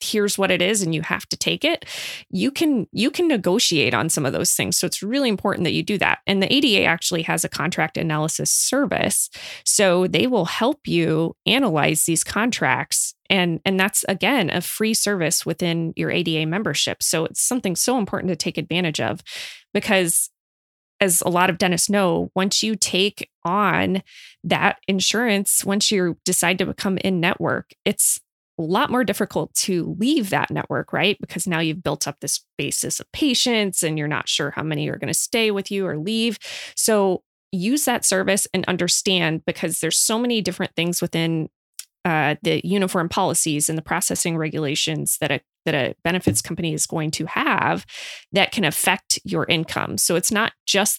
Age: 20-39